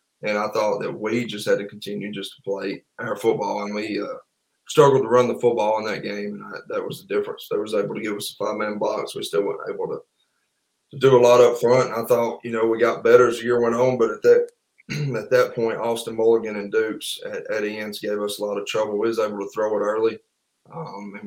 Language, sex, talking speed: English, male, 255 wpm